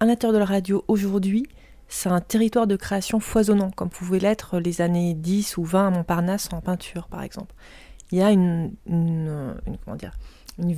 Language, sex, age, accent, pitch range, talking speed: French, female, 30-49, French, 180-215 Hz, 195 wpm